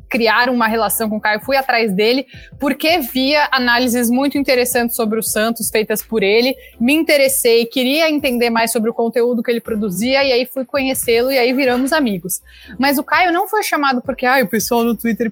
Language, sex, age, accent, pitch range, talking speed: Portuguese, female, 20-39, Brazilian, 225-285 Hz, 200 wpm